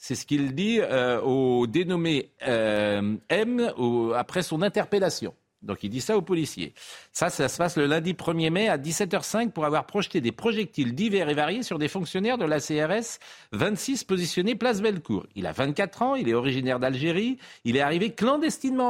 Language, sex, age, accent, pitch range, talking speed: French, male, 50-69, French, 125-205 Hz, 185 wpm